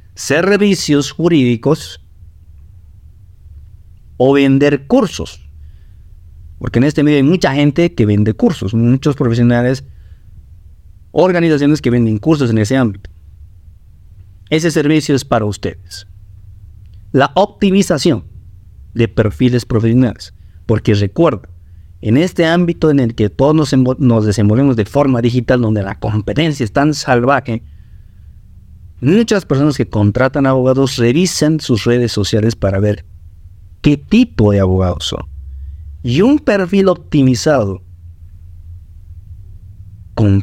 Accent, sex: Mexican, male